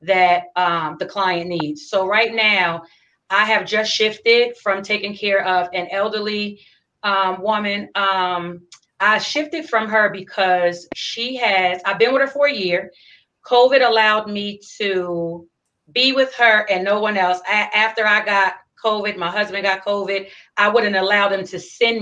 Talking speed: 165 wpm